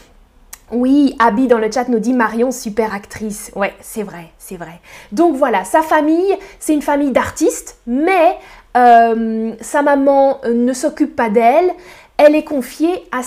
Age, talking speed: 20-39, 160 wpm